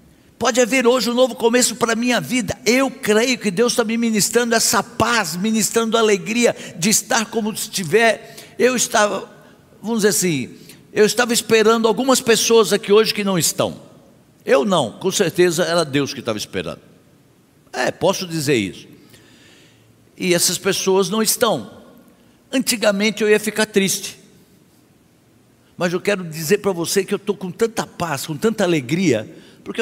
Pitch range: 185-230 Hz